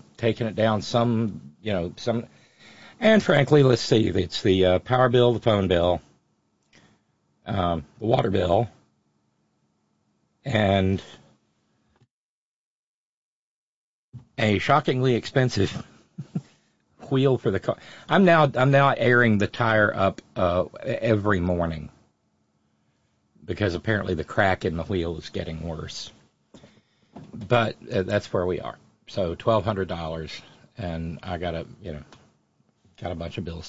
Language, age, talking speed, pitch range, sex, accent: English, 50-69, 130 wpm, 85-120 Hz, male, American